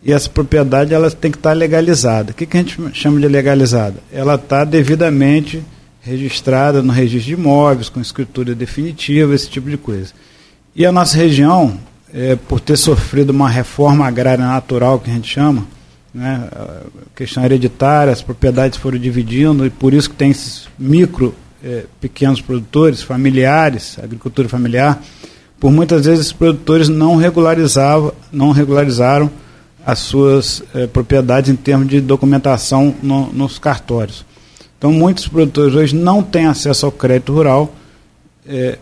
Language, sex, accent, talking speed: Portuguese, male, Brazilian, 145 wpm